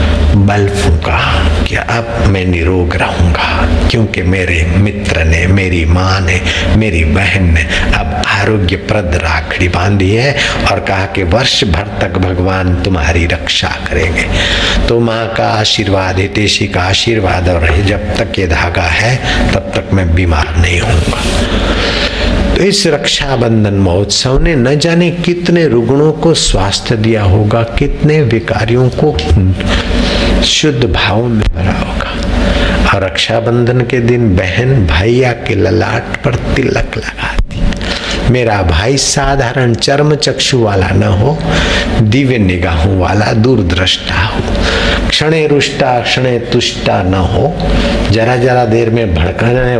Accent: native